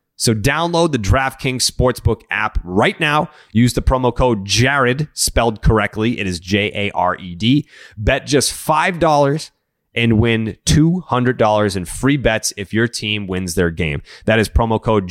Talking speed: 145 wpm